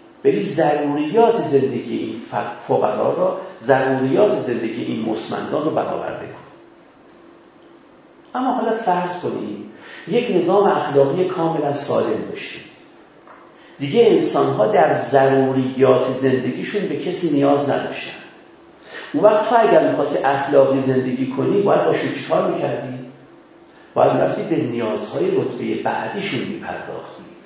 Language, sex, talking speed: Persian, male, 110 wpm